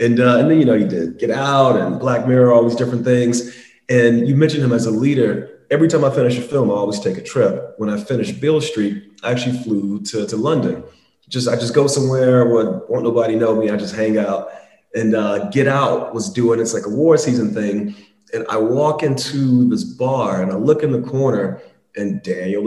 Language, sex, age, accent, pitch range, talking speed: English, male, 30-49, American, 105-140 Hz, 230 wpm